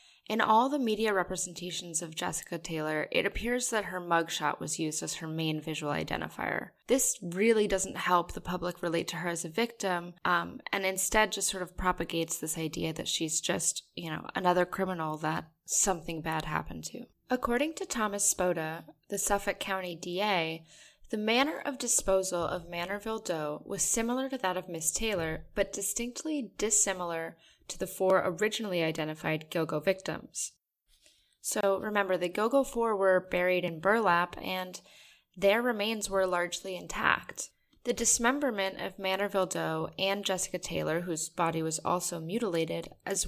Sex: female